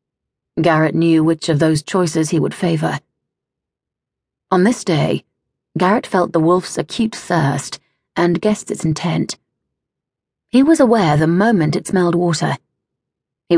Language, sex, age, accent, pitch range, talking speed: English, female, 30-49, British, 160-195 Hz, 135 wpm